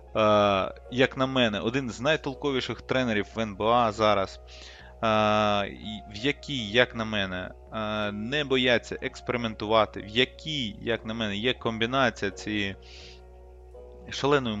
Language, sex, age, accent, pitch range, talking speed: Ukrainian, male, 20-39, native, 95-120 Hz, 110 wpm